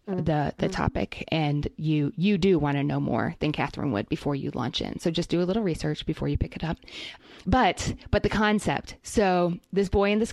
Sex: female